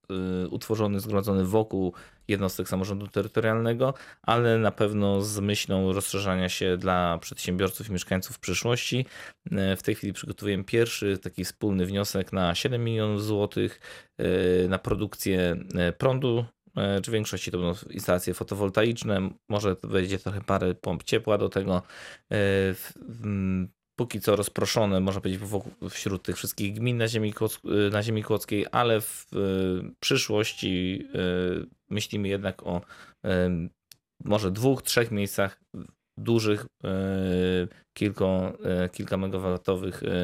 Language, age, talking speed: Polish, 20-39, 105 wpm